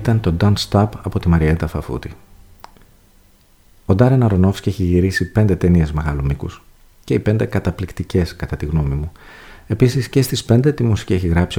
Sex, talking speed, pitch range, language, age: male, 170 wpm, 80-95 Hz, Greek, 40-59